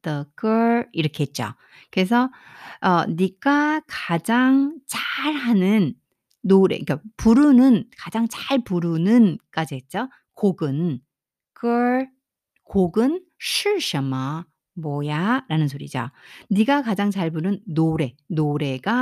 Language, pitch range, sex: Korean, 155-245 Hz, female